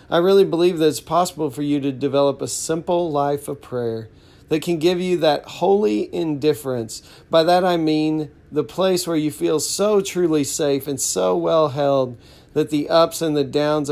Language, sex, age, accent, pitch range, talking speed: English, male, 40-59, American, 130-155 Hz, 190 wpm